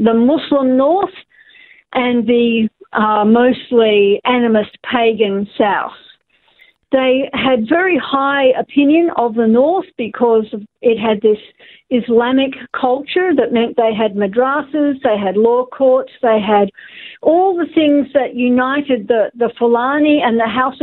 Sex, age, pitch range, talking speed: female, 50-69, 230-280 Hz, 135 wpm